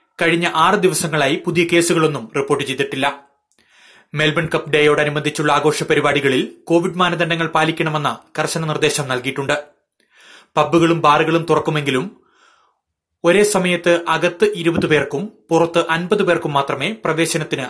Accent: native